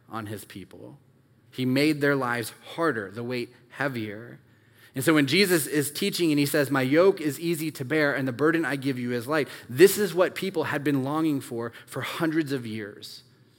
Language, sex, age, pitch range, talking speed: English, male, 20-39, 115-145 Hz, 205 wpm